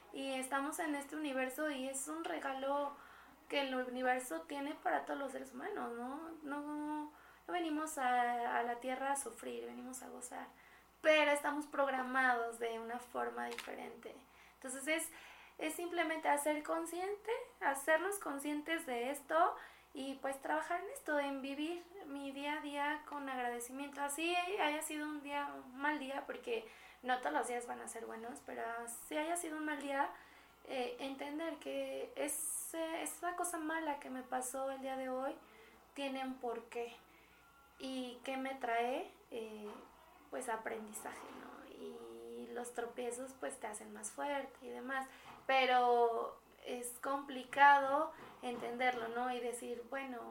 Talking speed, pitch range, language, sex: 155 wpm, 245-300 Hz, Spanish, female